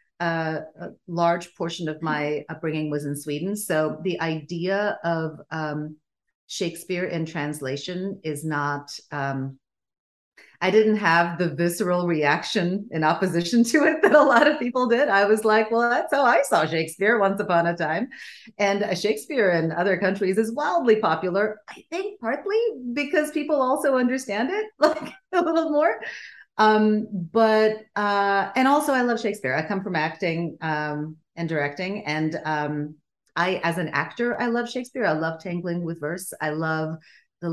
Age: 40-59